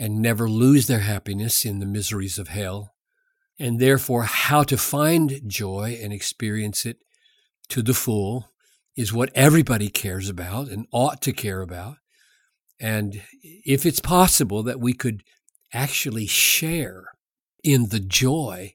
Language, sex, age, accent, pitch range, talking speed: English, male, 50-69, American, 110-140 Hz, 140 wpm